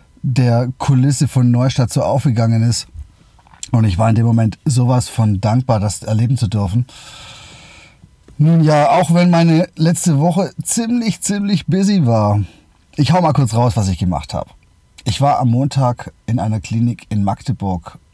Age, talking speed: 30-49, 160 wpm